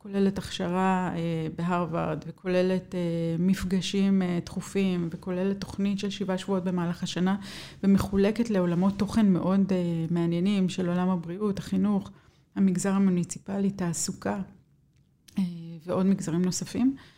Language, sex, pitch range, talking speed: Hebrew, female, 180-215 Hz, 100 wpm